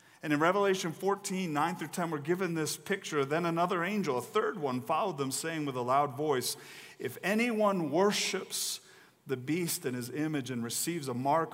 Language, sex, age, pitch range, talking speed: English, male, 40-59, 120-160 Hz, 185 wpm